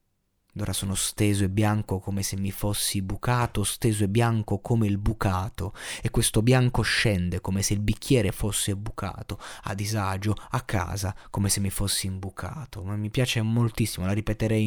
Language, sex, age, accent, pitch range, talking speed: Italian, male, 20-39, native, 95-115 Hz, 170 wpm